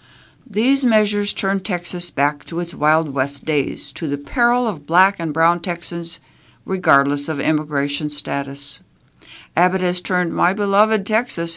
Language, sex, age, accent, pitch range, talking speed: English, female, 60-79, American, 145-190 Hz, 145 wpm